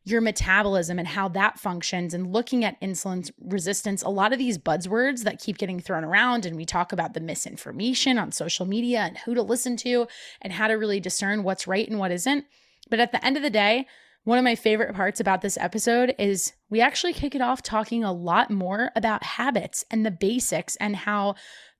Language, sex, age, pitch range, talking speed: English, female, 20-39, 190-240 Hz, 210 wpm